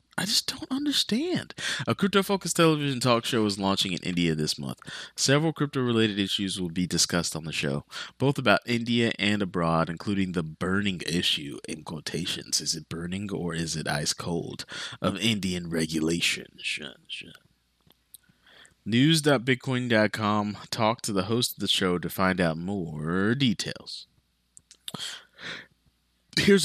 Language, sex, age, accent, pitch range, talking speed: English, male, 20-39, American, 85-125 Hz, 135 wpm